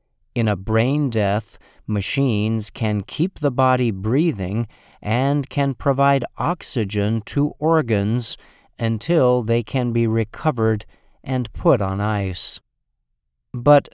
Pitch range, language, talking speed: 105-135 Hz, English, 110 wpm